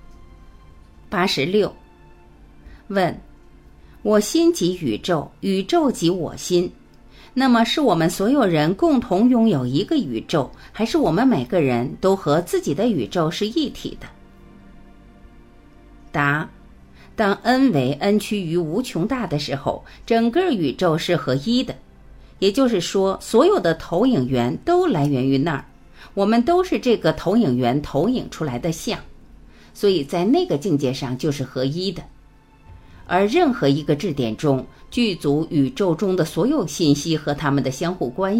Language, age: Chinese, 50-69